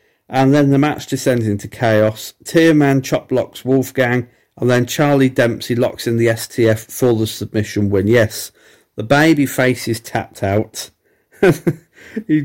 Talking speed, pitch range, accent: 150 wpm, 110-150 Hz, British